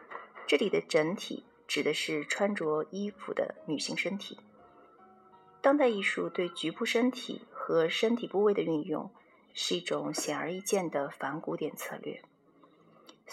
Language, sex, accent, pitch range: Chinese, female, native, 170-245 Hz